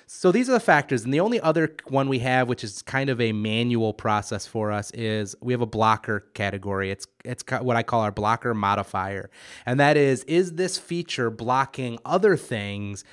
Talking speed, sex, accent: 200 wpm, male, American